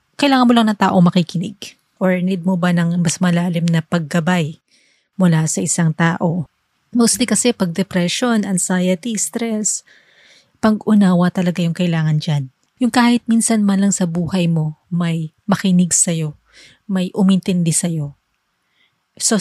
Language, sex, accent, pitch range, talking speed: Filipino, female, native, 175-210 Hz, 140 wpm